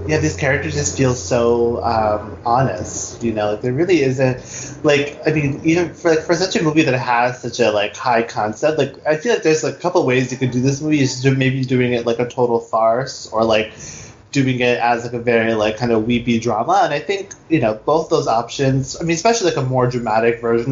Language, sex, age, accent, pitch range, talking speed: English, male, 20-39, American, 115-135 Hz, 235 wpm